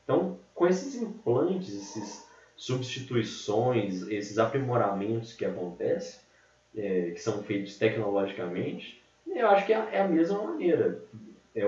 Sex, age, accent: male, 20-39, Brazilian